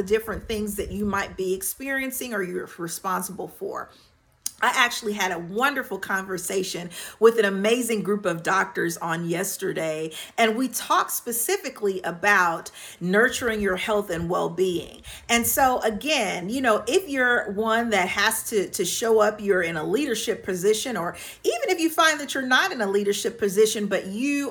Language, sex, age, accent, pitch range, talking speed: English, female, 40-59, American, 190-240 Hz, 165 wpm